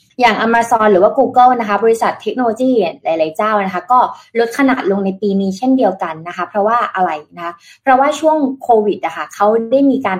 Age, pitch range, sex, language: 20-39, 185-235 Hz, female, Thai